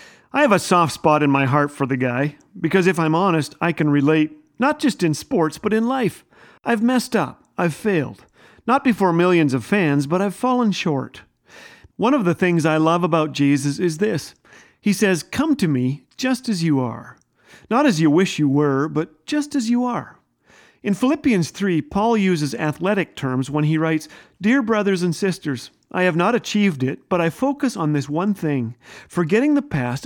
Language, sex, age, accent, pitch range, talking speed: English, male, 40-59, American, 150-210 Hz, 195 wpm